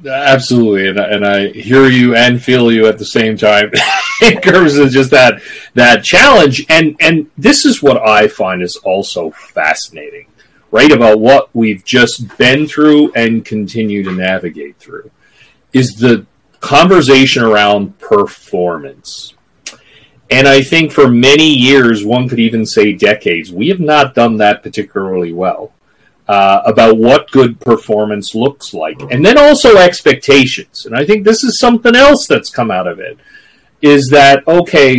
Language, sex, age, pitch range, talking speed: English, male, 40-59, 115-180 Hz, 155 wpm